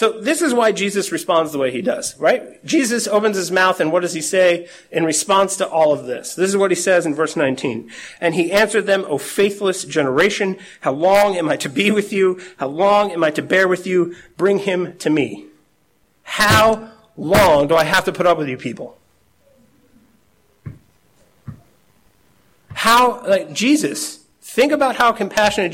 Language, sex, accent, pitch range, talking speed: English, male, American, 150-200 Hz, 185 wpm